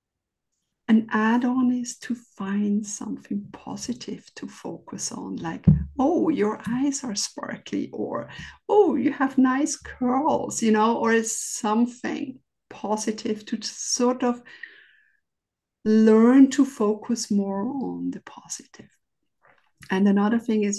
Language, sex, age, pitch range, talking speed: English, female, 50-69, 205-255 Hz, 125 wpm